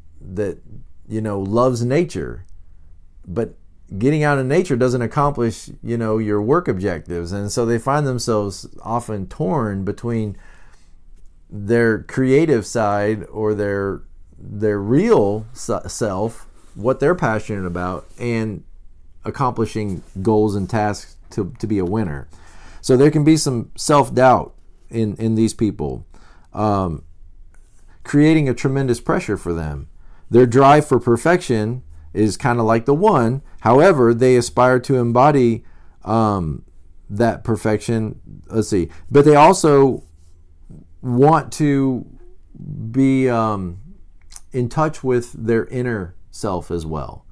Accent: American